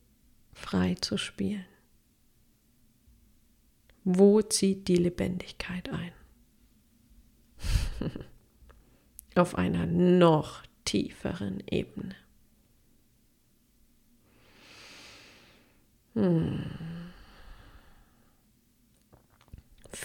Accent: German